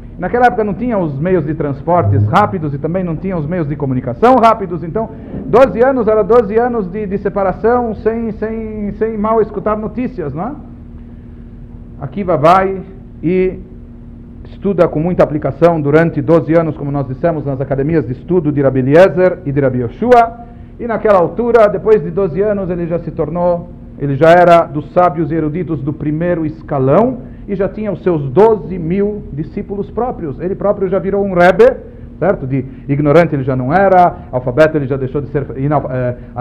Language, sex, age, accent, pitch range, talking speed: Portuguese, male, 50-69, Brazilian, 150-205 Hz, 175 wpm